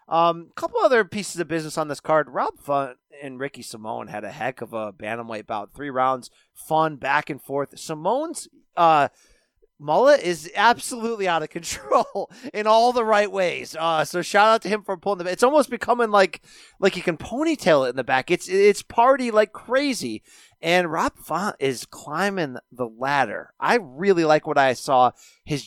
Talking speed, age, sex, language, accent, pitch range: 190 wpm, 30-49, male, English, American, 125-180 Hz